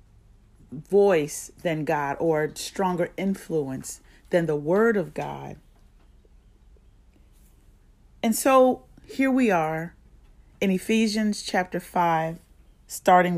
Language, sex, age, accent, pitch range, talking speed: English, female, 40-59, American, 155-200 Hz, 95 wpm